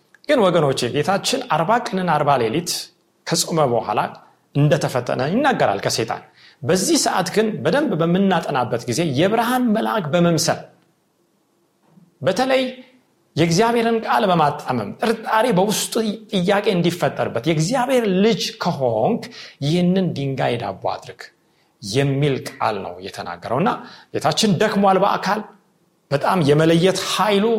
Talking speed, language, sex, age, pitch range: 85 wpm, Amharic, male, 40-59, 145-200 Hz